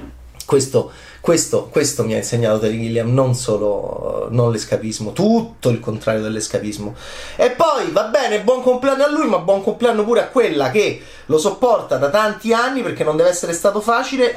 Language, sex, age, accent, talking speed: Italian, male, 30-49, native, 175 wpm